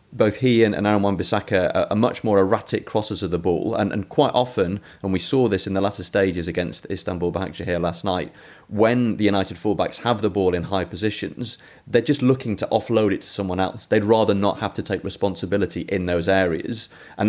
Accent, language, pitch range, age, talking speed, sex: British, English, 95-120 Hz, 30-49, 215 wpm, male